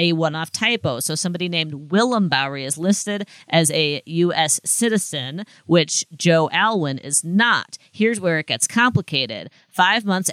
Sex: female